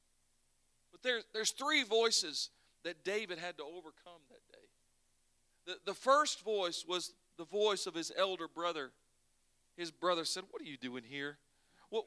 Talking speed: 160 wpm